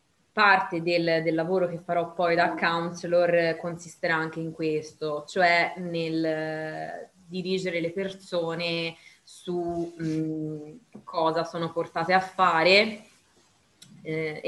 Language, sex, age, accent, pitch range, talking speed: Italian, female, 20-39, native, 160-185 Hz, 115 wpm